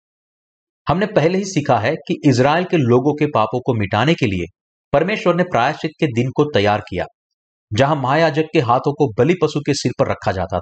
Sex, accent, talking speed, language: male, native, 200 wpm, Hindi